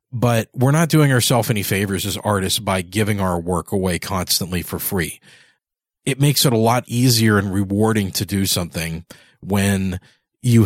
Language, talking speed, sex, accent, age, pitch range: English, 170 wpm, male, American, 40-59, 95-120 Hz